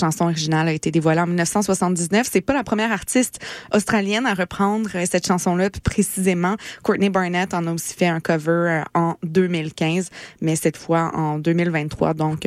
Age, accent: 20-39, Canadian